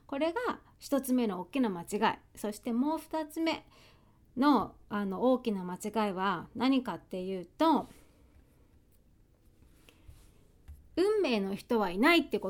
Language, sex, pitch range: Japanese, female, 200-285 Hz